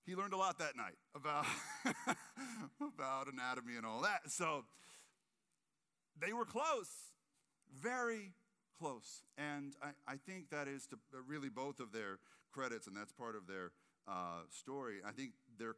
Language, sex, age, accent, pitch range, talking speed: English, male, 50-69, American, 135-210 Hz, 150 wpm